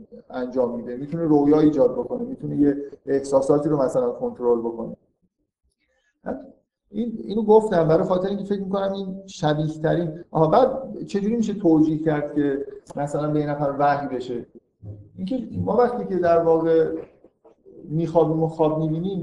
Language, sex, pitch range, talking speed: Persian, male, 130-180 Hz, 145 wpm